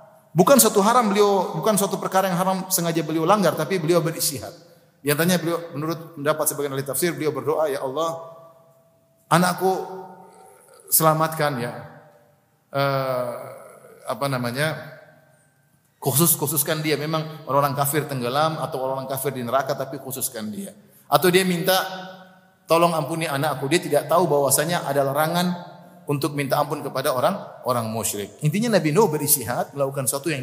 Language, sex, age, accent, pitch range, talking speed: Indonesian, male, 30-49, native, 140-185 Hz, 140 wpm